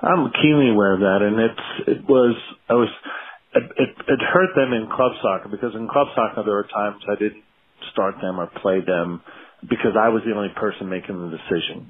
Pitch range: 95-115 Hz